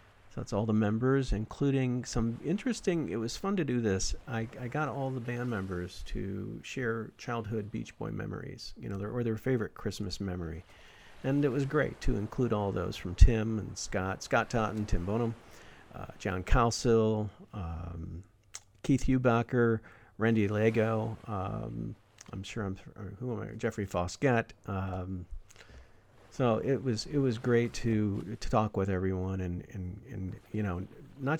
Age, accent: 50-69, American